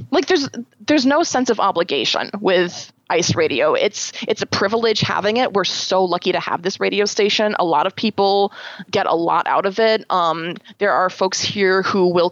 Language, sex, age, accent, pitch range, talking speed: English, female, 20-39, American, 175-205 Hz, 200 wpm